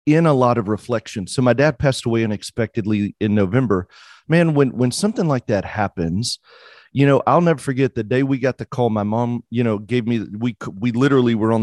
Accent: American